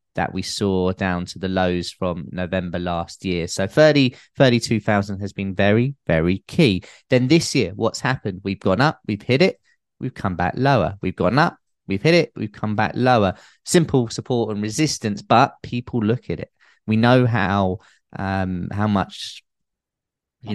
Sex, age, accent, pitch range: male, 20-39, British, 95-120 Hz